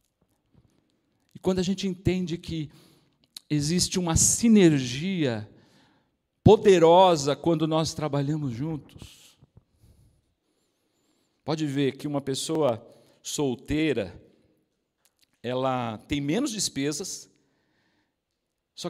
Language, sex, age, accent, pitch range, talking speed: Portuguese, male, 50-69, Brazilian, 140-180 Hz, 75 wpm